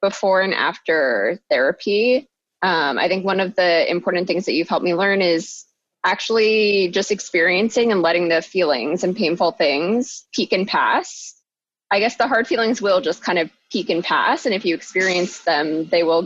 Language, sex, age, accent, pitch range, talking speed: English, female, 20-39, American, 170-210 Hz, 185 wpm